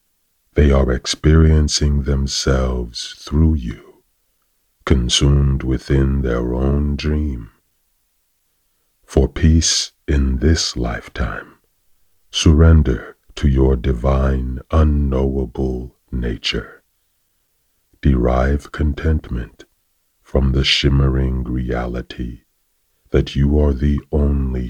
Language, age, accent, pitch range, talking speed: English, 40-59, American, 65-75 Hz, 80 wpm